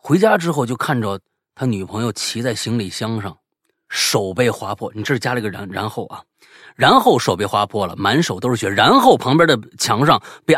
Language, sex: Chinese, male